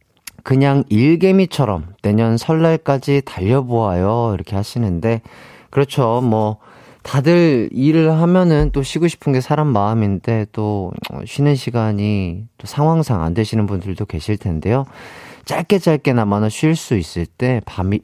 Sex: male